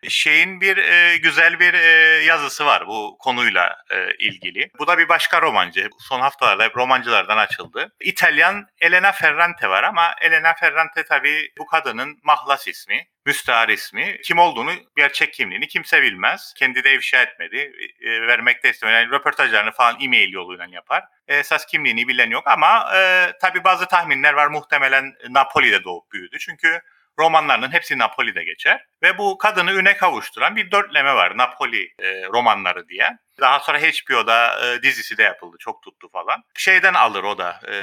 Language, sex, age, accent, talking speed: Turkish, male, 30-49, native, 160 wpm